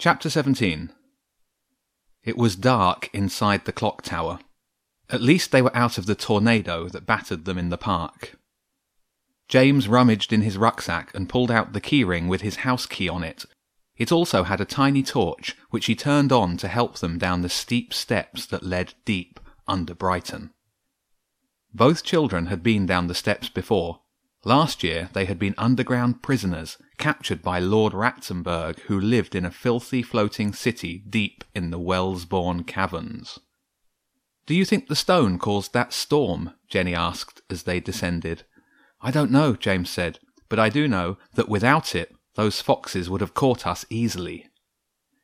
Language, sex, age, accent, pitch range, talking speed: English, male, 30-49, British, 90-125 Hz, 165 wpm